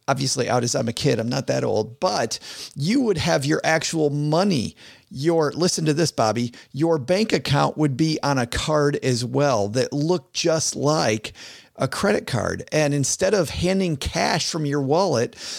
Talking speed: 180 wpm